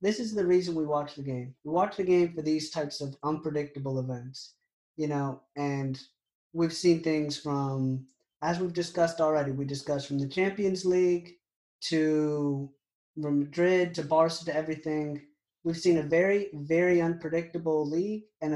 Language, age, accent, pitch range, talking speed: English, 30-49, American, 145-175 Hz, 160 wpm